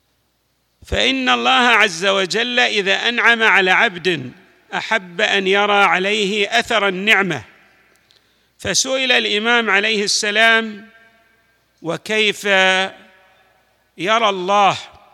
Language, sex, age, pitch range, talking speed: Arabic, male, 50-69, 185-225 Hz, 85 wpm